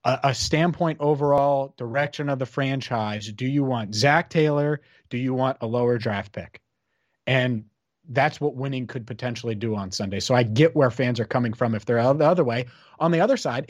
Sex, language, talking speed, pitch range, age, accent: male, English, 200 wpm, 125-150 Hz, 30-49, American